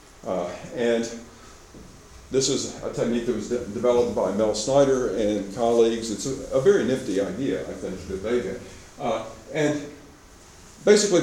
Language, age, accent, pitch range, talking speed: English, 50-69, American, 110-145 Hz, 145 wpm